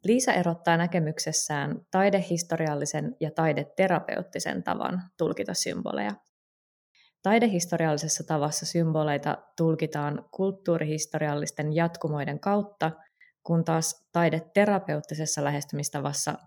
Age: 20-39